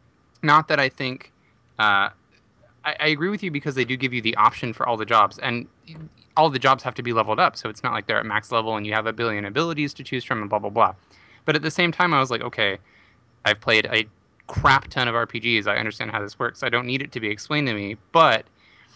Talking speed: 260 wpm